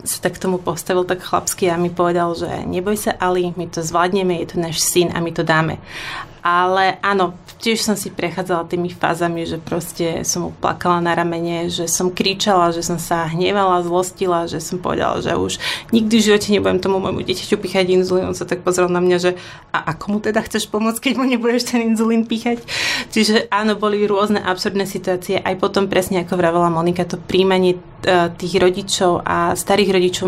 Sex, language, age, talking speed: female, Slovak, 30-49, 190 wpm